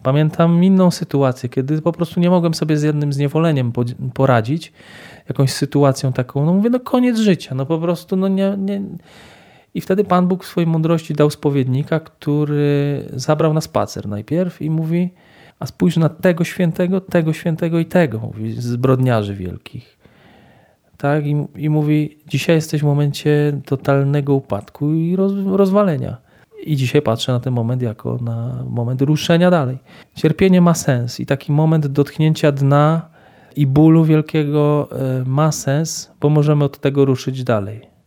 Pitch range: 135-170 Hz